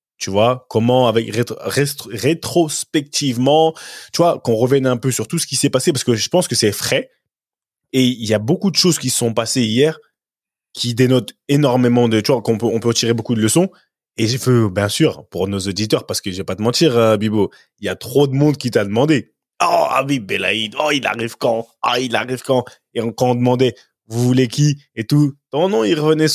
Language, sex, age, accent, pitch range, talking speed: French, male, 20-39, French, 105-135 Hz, 230 wpm